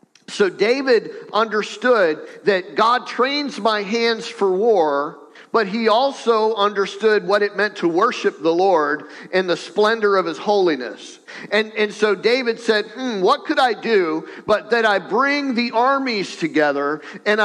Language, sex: English, male